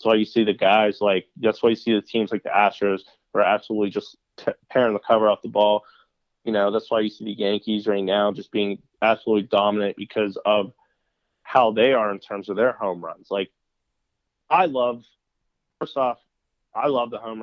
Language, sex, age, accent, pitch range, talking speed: English, male, 20-39, American, 105-125 Hz, 215 wpm